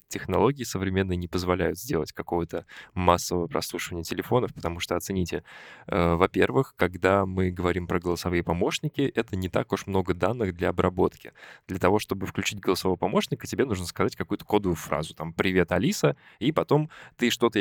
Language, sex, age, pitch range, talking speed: Russian, male, 20-39, 90-110 Hz, 160 wpm